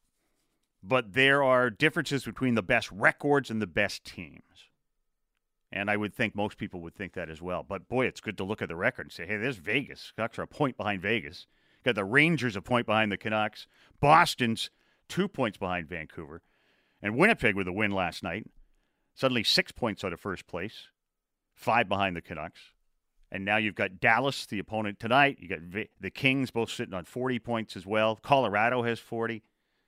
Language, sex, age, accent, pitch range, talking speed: English, male, 40-59, American, 100-135 Hz, 195 wpm